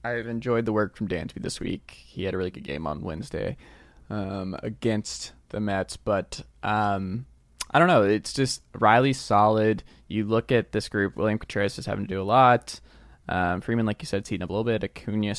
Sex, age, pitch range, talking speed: male, 20-39, 90-115 Hz, 215 wpm